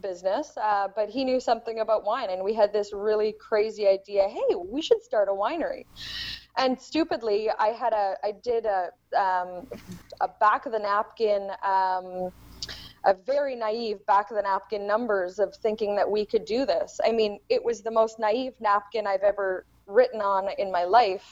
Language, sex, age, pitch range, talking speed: English, female, 20-39, 195-245 Hz, 185 wpm